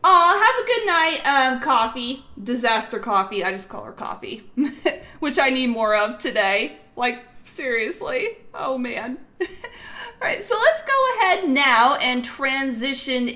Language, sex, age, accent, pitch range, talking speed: English, female, 30-49, American, 185-250 Hz, 150 wpm